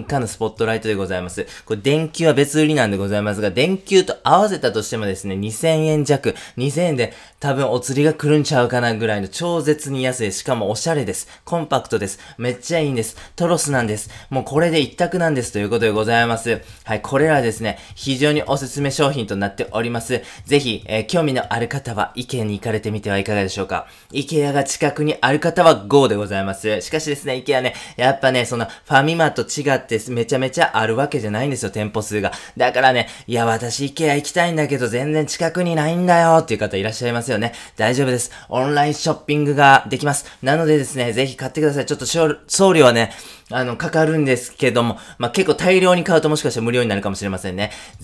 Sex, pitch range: male, 110-145 Hz